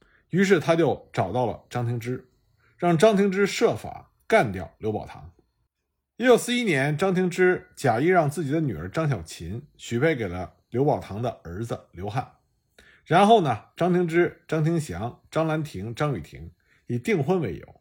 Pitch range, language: 115-170 Hz, Chinese